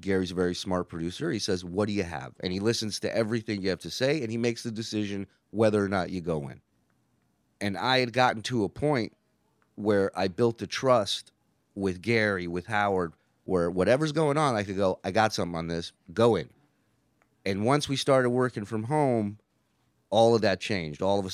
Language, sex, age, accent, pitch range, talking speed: English, male, 30-49, American, 95-125 Hz, 210 wpm